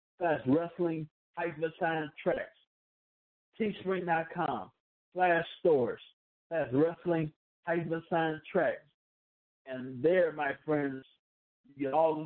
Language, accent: English, American